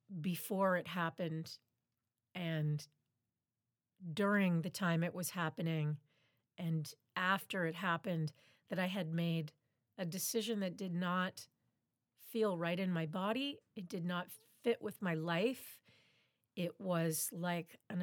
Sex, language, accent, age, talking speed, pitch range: female, English, American, 40-59, 130 wpm, 140-185 Hz